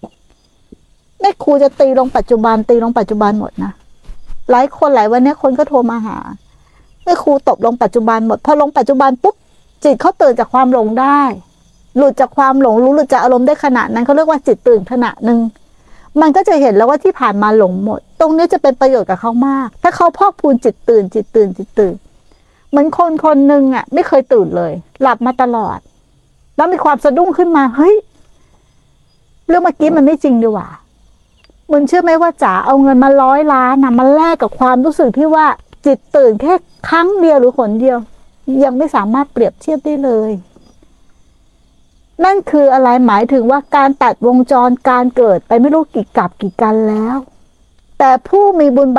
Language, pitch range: Thai, 230-295 Hz